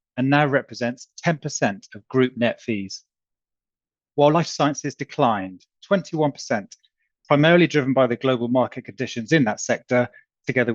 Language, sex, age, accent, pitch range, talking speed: English, male, 30-49, British, 115-145 Hz, 135 wpm